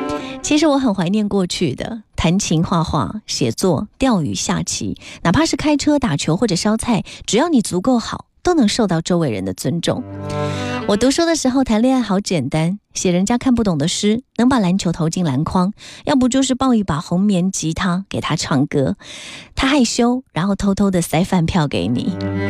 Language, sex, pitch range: Chinese, female, 170-240 Hz